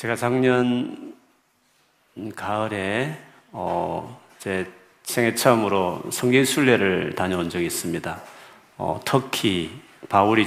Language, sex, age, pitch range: Korean, male, 40-59, 95-125 Hz